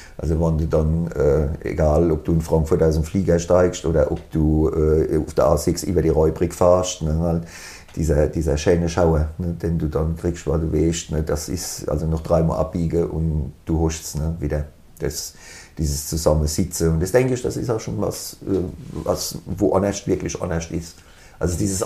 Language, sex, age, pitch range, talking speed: German, male, 50-69, 80-100 Hz, 190 wpm